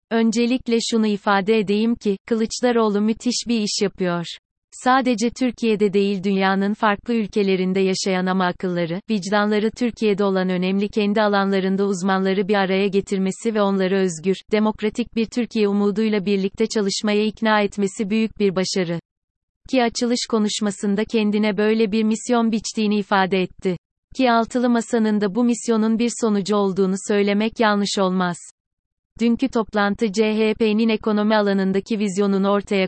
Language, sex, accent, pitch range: Turkish, female, native, 190-220 Hz